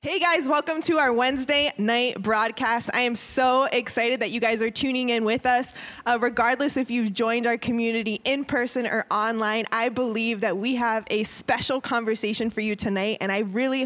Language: English